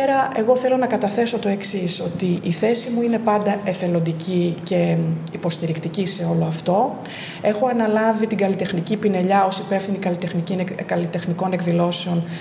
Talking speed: 130 wpm